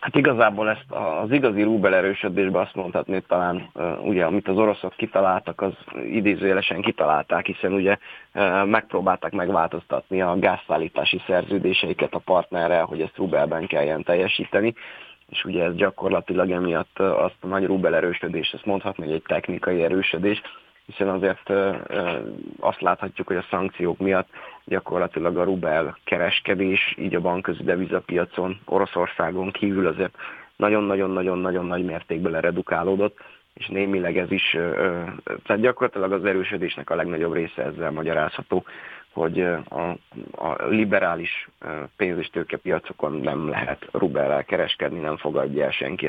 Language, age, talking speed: Hungarian, 30-49, 130 wpm